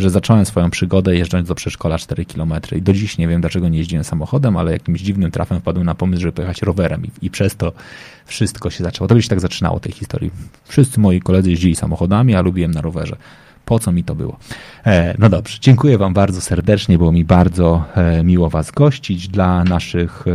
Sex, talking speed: male, 210 wpm